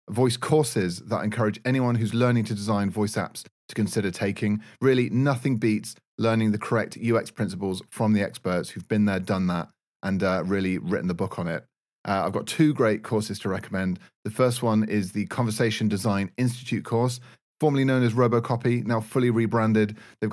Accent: British